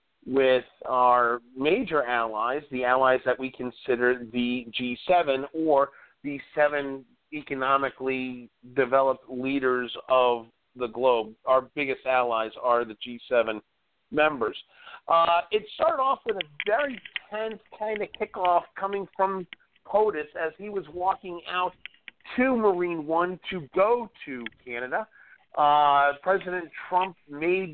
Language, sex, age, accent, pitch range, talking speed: English, male, 50-69, American, 130-190 Hz, 125 wpm